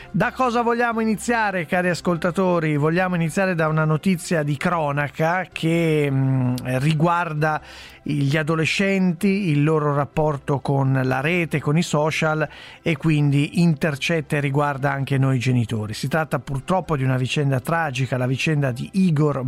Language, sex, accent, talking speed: Italian, male, native, 140 wpm